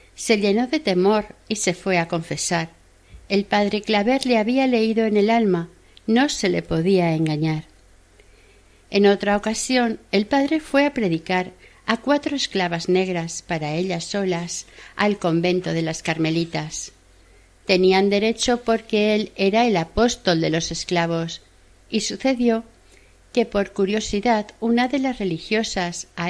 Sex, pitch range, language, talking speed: female, 165-230 Hz, Spanish, 145 wpm